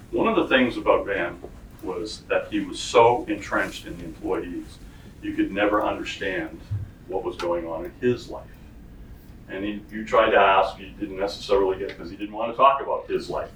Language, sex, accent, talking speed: English, male, American, 200 wpm